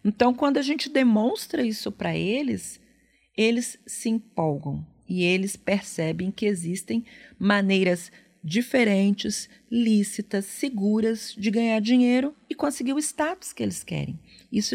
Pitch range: 180-240 Hz